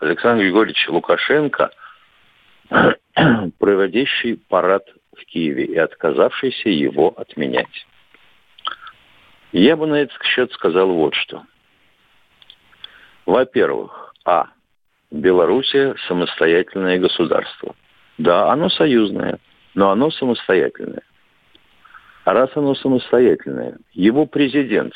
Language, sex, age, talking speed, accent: Russian, male, 50-69, 85 wpm, native